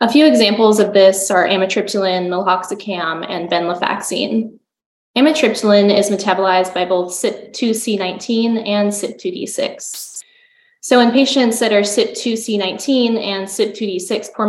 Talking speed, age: 110 wpm, 10-29